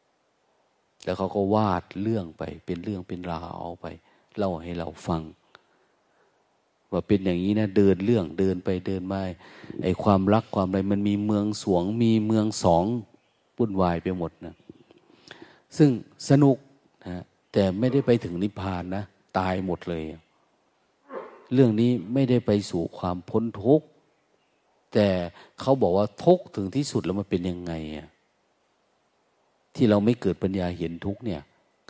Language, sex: Thai, male